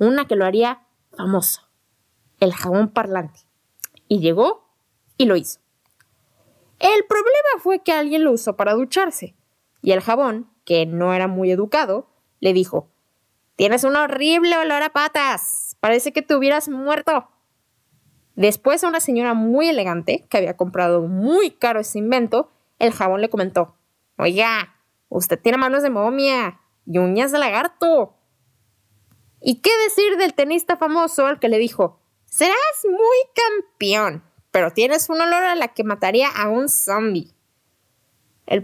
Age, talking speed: 20-39, 150 wpm